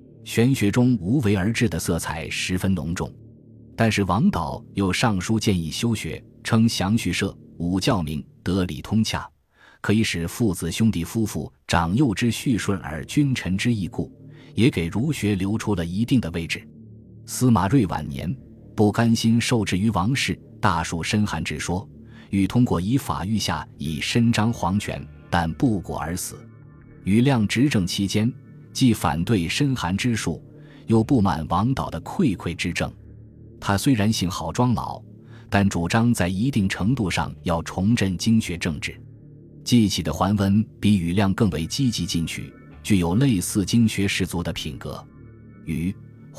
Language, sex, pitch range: Chinese, male, 85-115 Hz